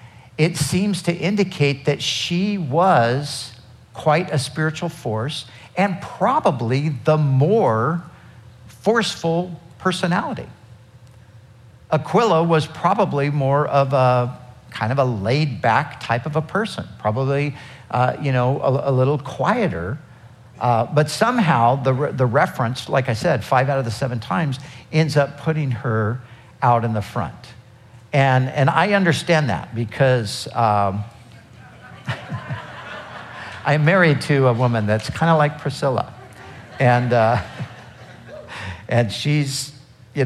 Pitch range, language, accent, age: 120-150 Hz, English, American, 50-69